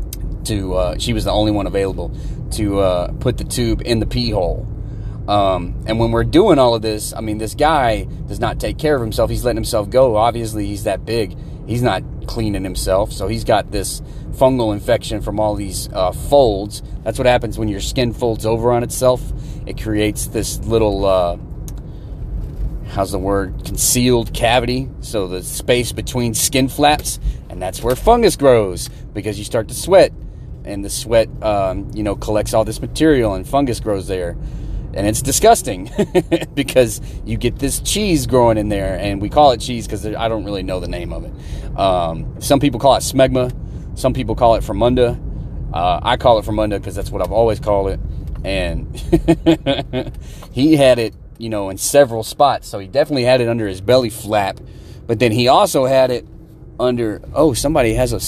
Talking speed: 190 wpm